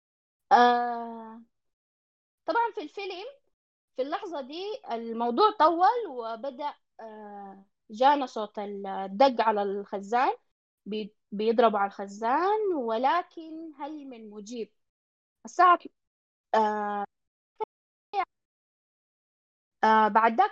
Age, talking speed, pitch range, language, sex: 20-39, 75 wpm, 225-295 Hz, Arabic, female